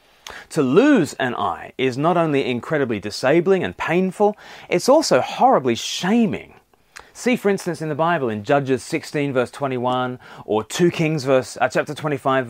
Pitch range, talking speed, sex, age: 120-175 Hz, 155 wpm, male, 30-49